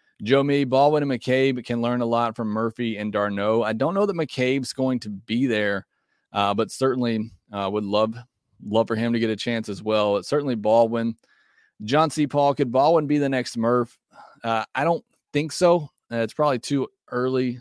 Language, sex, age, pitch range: English, male, 30-49, 110-135 Hz